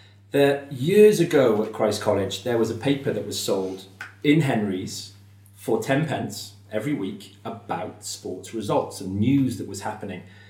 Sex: male